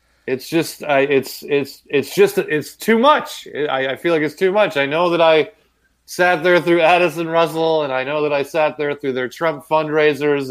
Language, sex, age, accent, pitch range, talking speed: English, male, 30-49, American, 120-170 Hz, 210 wpm